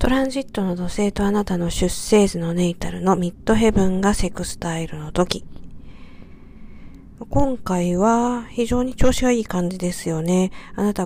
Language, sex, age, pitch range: Japanese, female, 50-69, 180-220 Hz